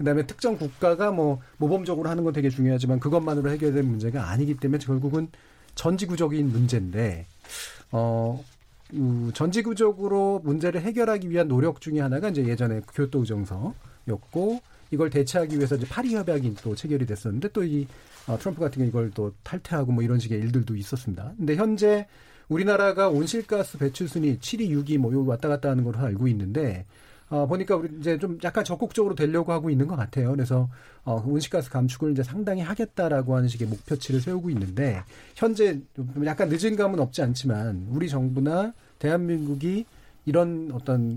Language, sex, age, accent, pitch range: Korean, male, 40-59, native, 125-170 Hz